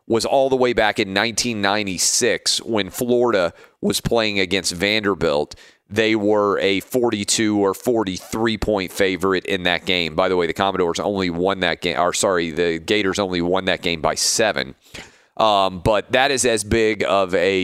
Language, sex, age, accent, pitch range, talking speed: English, male, 30-49, American, 95-120 Hz, 175 wpm